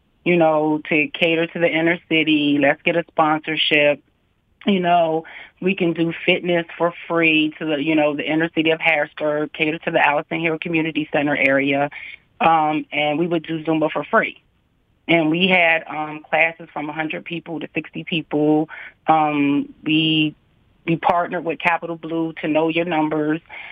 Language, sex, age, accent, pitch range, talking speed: English, female, 30-49, American, 150-170 Hz, 170 wpm